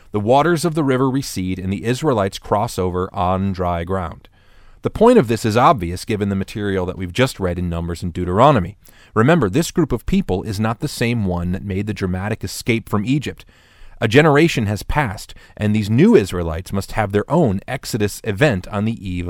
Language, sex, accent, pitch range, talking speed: English, male, American, 95-125 Hz, 200 wpm